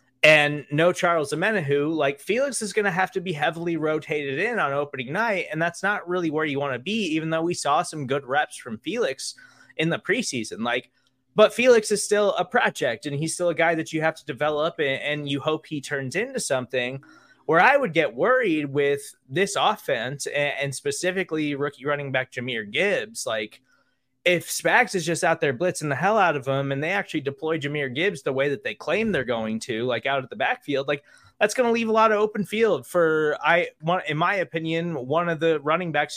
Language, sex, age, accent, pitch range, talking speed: English, male, 20-39, American, 145-185 Hz, 215 wpm